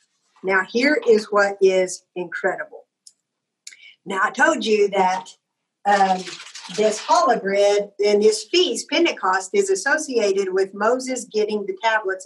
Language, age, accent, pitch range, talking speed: English, 50-69, American, 205-280 Hz, 120 wpm